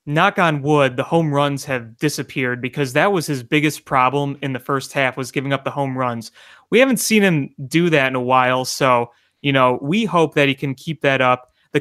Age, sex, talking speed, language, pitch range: 30-49, male, 230 wpm, English, 130-155 Hz